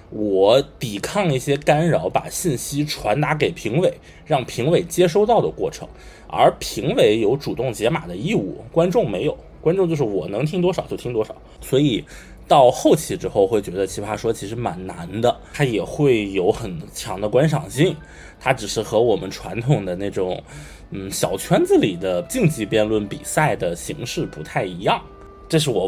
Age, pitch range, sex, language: 20-39, 100-160 Hz, male, Chinese